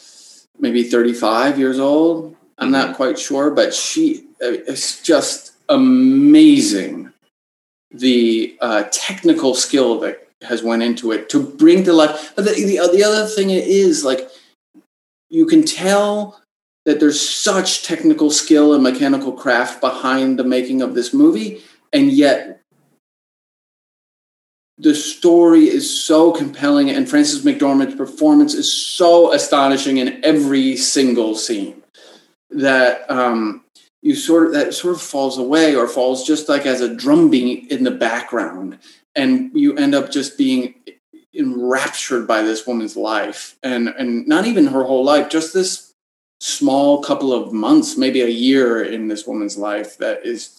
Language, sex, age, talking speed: English, male, 30-49, 145 wpm